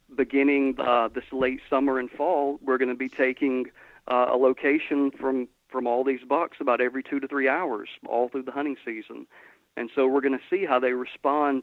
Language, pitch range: English, 125-145 Hz